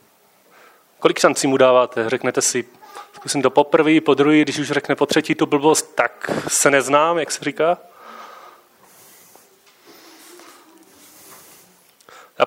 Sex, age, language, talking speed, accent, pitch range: male, 30-49, Czech, 120 wpm, native, 140-170 Hz